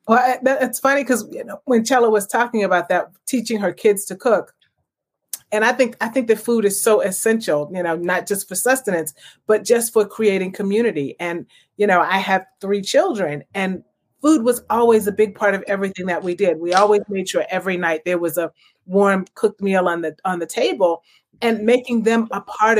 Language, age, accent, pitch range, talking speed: English, 30-49, American, 190-235 Hz, 210 wpm